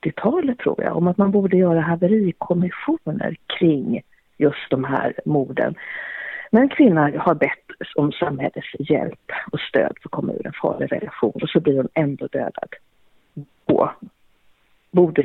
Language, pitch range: Swedish, 150-225 Hz